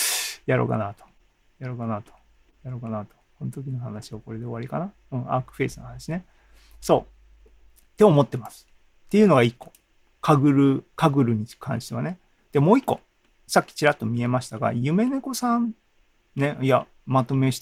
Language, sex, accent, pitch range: Japanese, male, native, 115-150 Hz